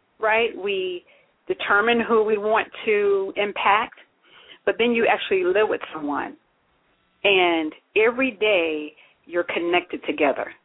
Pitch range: 185-265 Hz